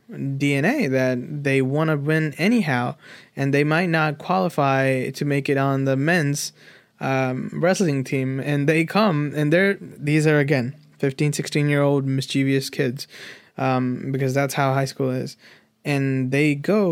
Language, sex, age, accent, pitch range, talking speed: English, male, 20-39, American, 135-155 Hz, 160 wpm